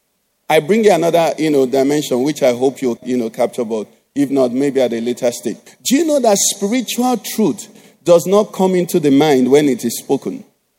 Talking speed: 210 wpm